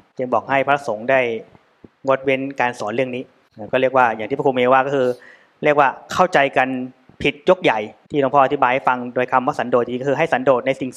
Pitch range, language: 125-145 Hz, Thai